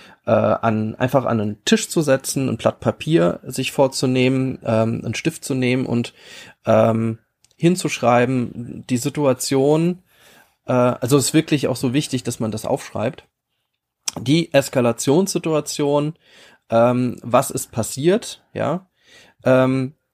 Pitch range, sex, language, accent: 115-150 Hz, male, German, German